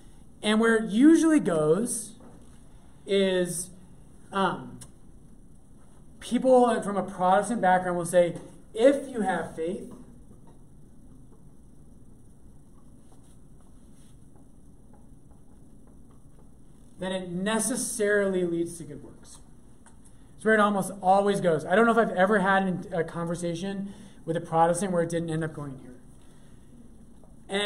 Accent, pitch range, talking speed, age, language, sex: American, 170-220 Hz, 110 wpm, 30-49, English, male